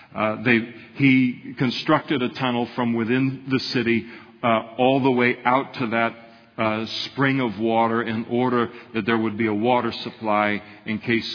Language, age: English, 50-69